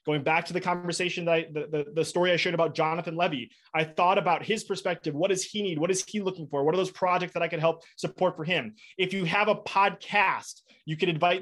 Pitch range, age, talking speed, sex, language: 155-190 Hz, 20-39, 255 wpm, male, English